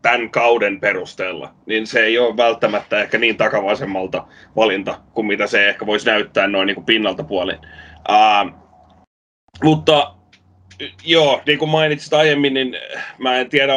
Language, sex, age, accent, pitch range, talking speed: Finnish, male, 30-49, native, 110-145 Hz, 150 wpm